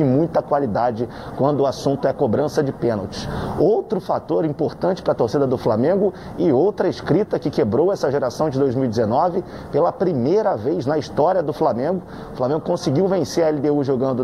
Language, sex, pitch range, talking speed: Portuguese, male, 130-175 Hz, 170 wpm